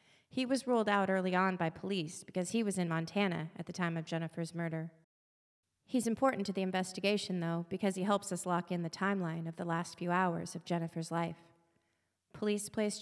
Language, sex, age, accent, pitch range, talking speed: English, female, 30-49, American, 170-200 Hz, 200 wpm